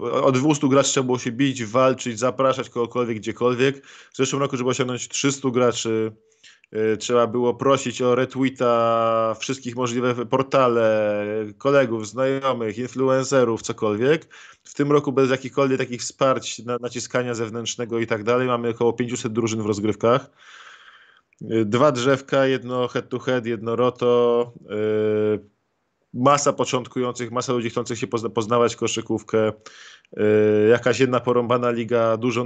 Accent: native